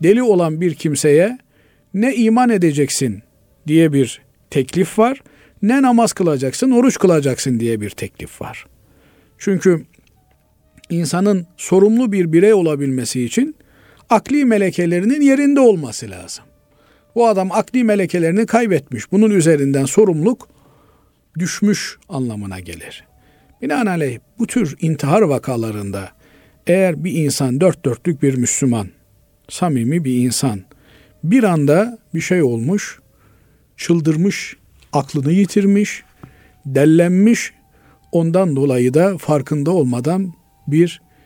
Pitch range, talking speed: 130-195 Hz, 105 wpm